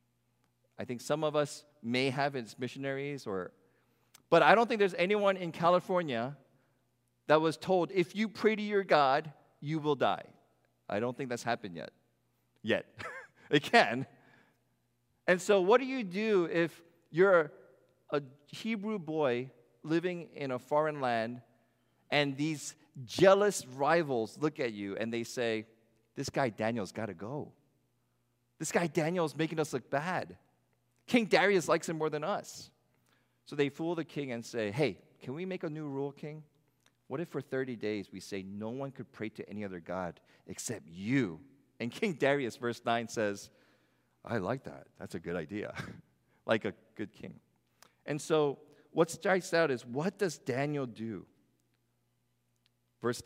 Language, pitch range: English, 120-165 Hz